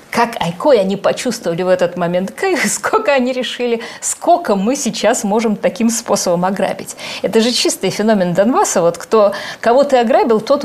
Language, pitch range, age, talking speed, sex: Russian, 200-265 Hz, 50-69, 140 wpm, female